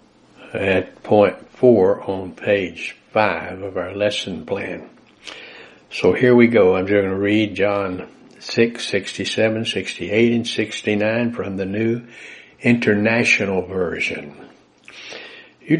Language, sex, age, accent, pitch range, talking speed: English, male, 60-79, American, 100-120 Hz, 115 wpm